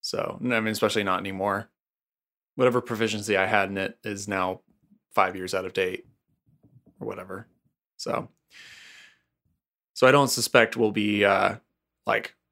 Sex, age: male, 20-39